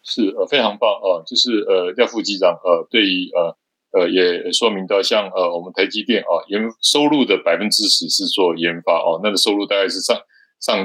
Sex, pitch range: male, 90-145 Hz